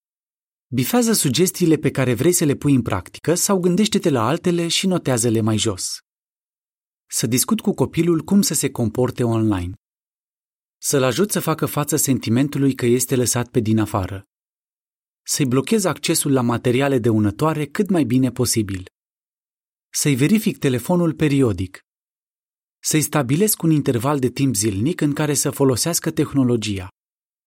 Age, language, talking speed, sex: 30-49, Romanian, 145 wpm, male